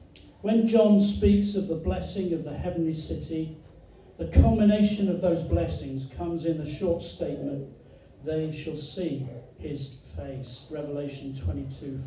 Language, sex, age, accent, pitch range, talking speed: English, male, 40-59, British, 140-185 Hz, 135 wpm